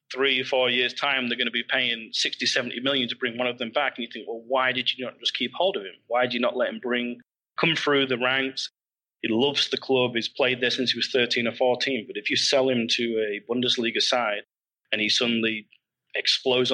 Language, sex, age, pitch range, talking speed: Persian, male, 30-49, 120-140 Hz, 245 wpm